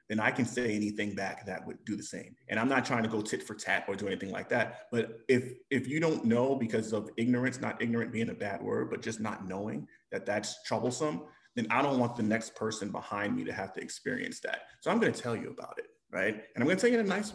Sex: male